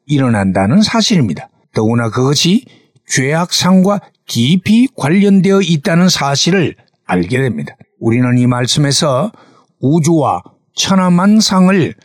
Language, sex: Korean, male